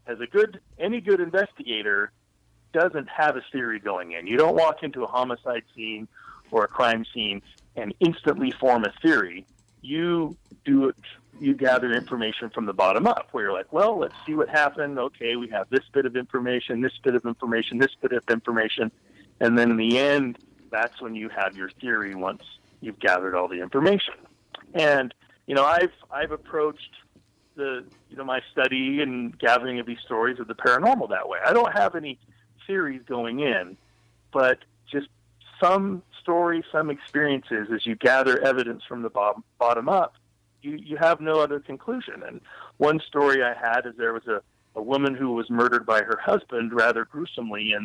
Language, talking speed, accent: English, 185 wpm, American